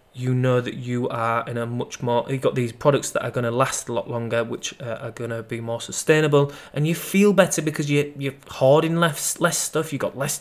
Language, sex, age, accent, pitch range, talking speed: English, male, 20-39, British, 125-155 Hz, 240 wpm